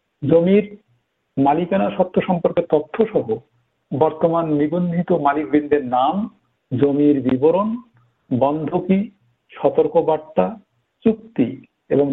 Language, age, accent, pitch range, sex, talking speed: Bengali, 50-69, native, 135-180 Hz, male, 85 wpm